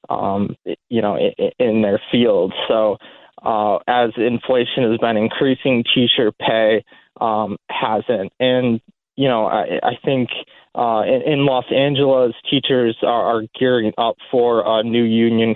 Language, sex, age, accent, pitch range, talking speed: English, male, 20-39, American, 110-125 Hz, 145 wpm